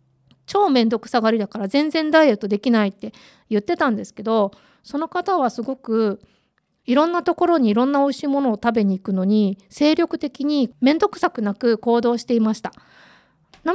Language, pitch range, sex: Japanese, 210-290 Hz, female